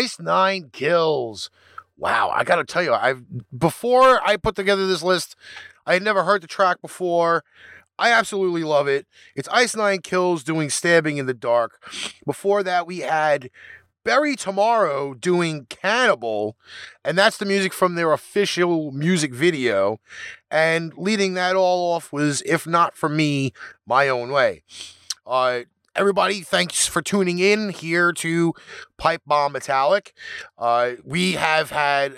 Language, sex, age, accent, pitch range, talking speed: English, male, 30-49, American, 145-190 Hz, 150 wpm